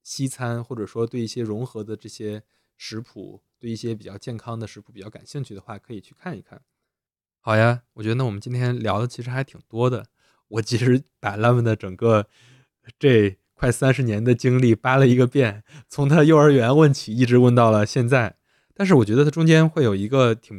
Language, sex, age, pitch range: Chinese, male, 20-39, 105-130 Hz